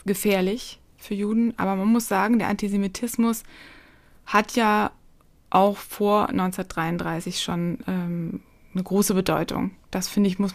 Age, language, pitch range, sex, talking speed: 20-39, German, 185-215 Hz, female, 130 wpm